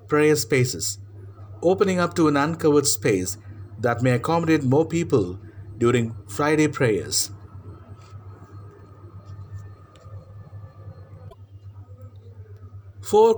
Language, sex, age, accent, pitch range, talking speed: English, male, 50-69, Indian, 100-145 Hz, 75 wpm